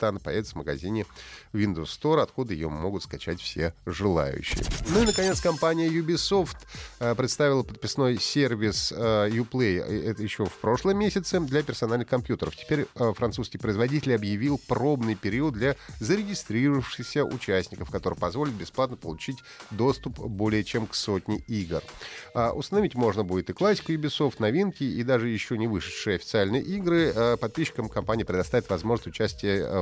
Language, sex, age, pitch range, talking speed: Russian, male, 30-49, 95-145 Hz, 135 wpm